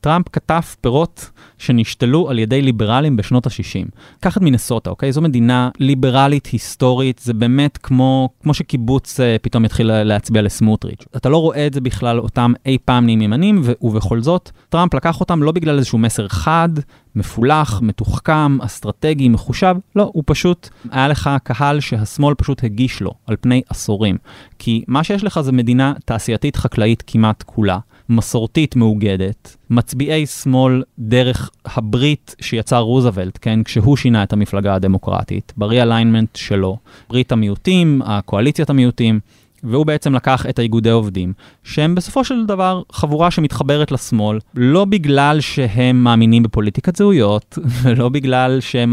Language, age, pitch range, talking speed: Hebrew, 30-49, 110-145 Hz, 140 wpm